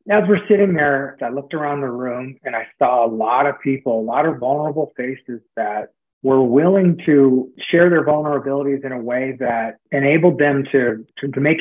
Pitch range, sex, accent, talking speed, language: 125-150 Hz, male, American, 195 wpm, English